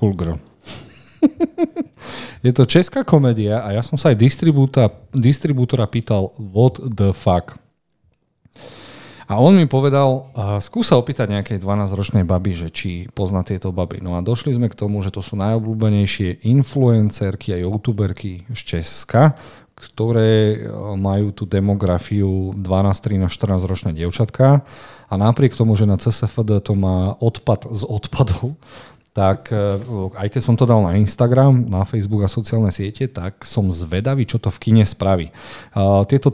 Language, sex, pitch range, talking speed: Slovak, male, 95-120 Hz, 140 wpm